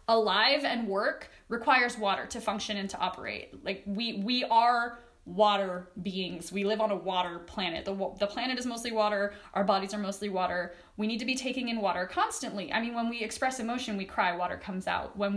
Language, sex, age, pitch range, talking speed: English, female, 20-39, 200-270 Hz, 205 wpm